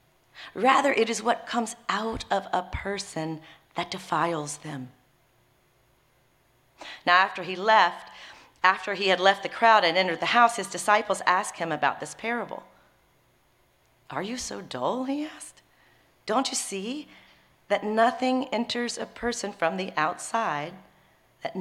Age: 40-59